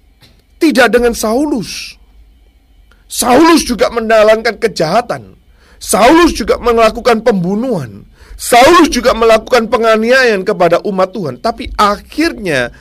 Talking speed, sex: 95 wpm, male